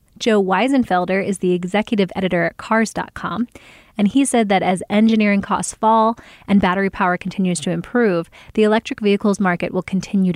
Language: English